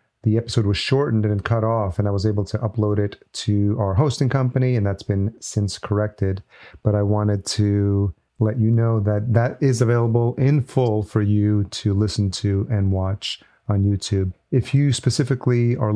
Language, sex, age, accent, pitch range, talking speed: English, male, 40-59, American, 105-120 Hz, 185 wpm